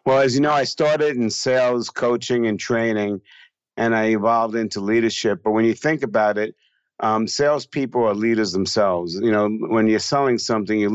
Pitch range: 100-120 Hz